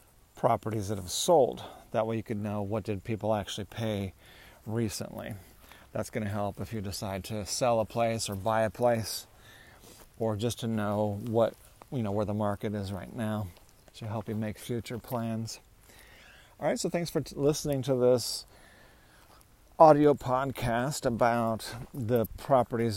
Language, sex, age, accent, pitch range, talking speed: English, male, 40-59, American, 105-125 Hz, 165 wpm